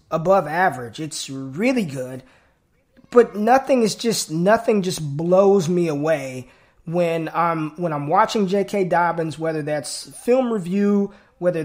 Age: 20-39